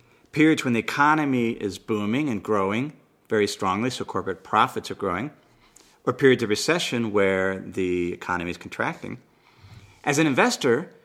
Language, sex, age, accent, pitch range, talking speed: English, male, 50-69, American, 100-140 Hz, 145 wpm